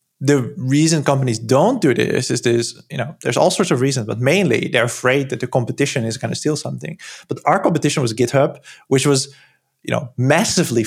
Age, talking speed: 20-39, 205 wpm